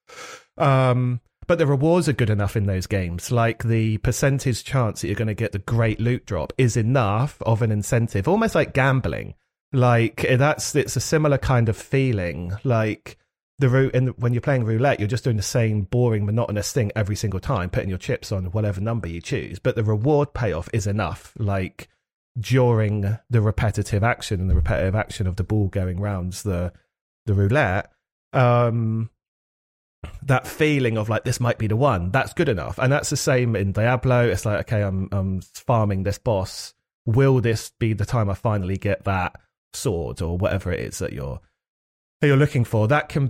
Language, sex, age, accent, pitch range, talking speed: English, male, 30-49, British, 100-125 Hz, 190 wpm